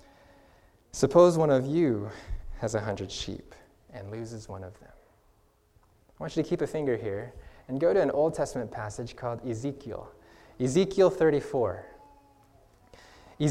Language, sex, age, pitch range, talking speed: English, male, 20-39, 135-190 Hz, 140 wpm